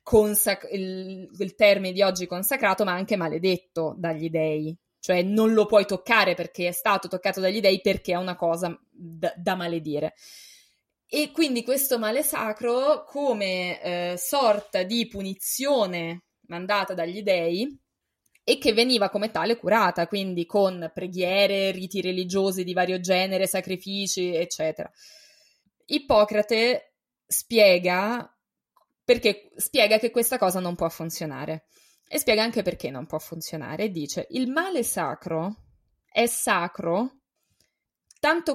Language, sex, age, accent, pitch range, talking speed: Italian, female, 20-39, native, 175-225 Hz, 130 wpm